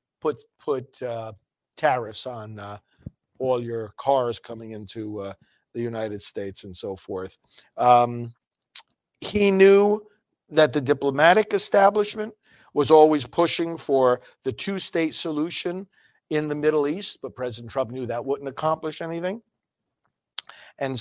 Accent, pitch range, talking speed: American, 115-155 Hz, 130 wpm